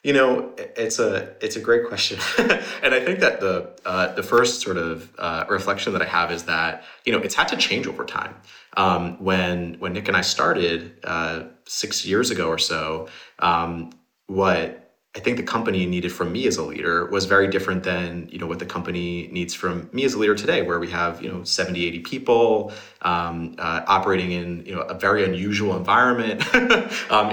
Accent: American